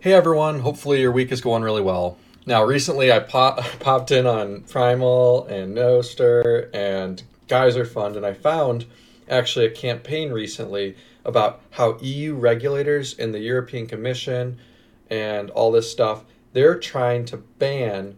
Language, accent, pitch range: English, American, 115-140 Hz